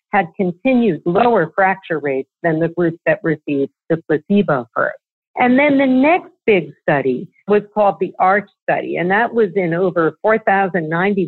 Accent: American